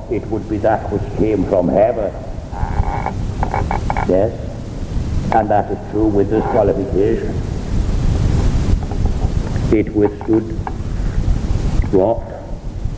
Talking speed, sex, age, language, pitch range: 90 wpm, male, 60-79, English, 95-115 Hz